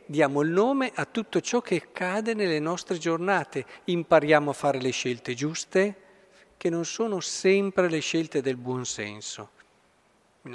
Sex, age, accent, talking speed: male, 50-69, native, 155 wpm